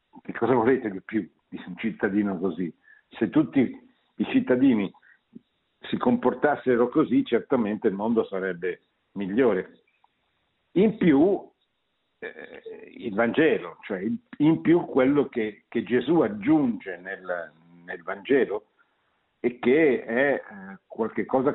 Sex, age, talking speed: male, 60-79, 115 wpm